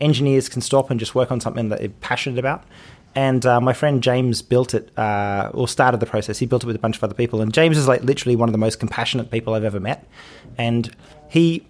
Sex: male